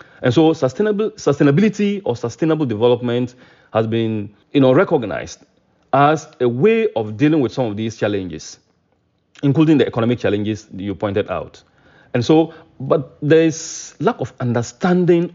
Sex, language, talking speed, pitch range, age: male, English, 145 wpm, 115-160 Hz, 40-59